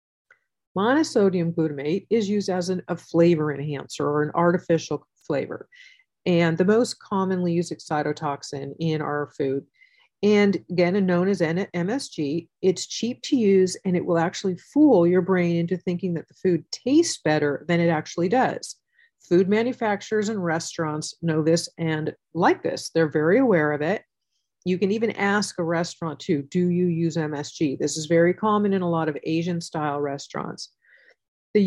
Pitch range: 160-210 Hz